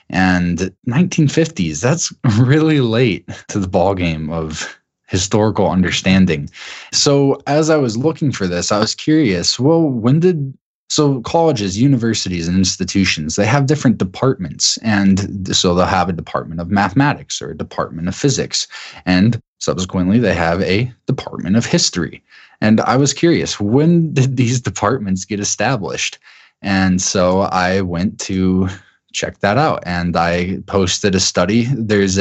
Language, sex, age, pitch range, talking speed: English, male, 20-39, 90-120 Hz, 145 wpm